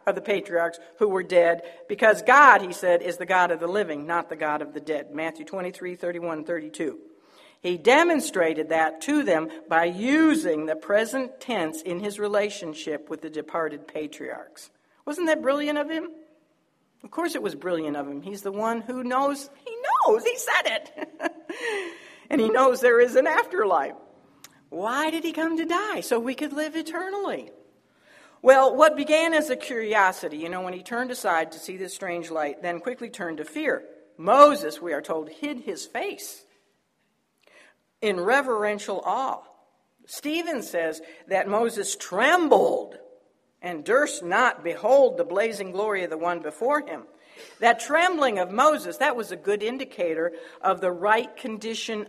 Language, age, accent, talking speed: English, 60-79, American, 165 wpm